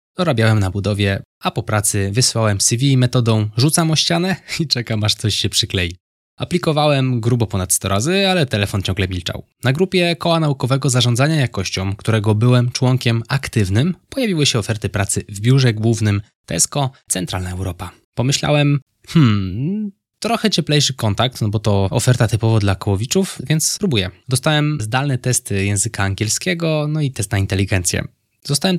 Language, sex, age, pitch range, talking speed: Polish, male, 20-39, 105-145 Hz, 150 wpm